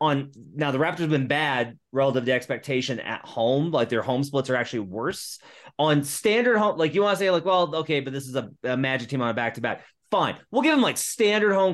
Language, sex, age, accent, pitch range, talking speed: English, male, 30-49, American, 125-175 Hz, 240 wpm